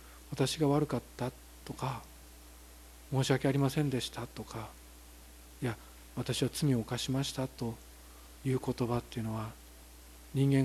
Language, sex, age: Japanese, male, 40-59